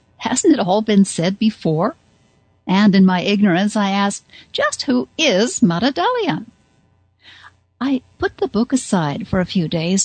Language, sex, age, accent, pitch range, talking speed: English, female, 60-79, American, 175-230 Hz, 155 wpm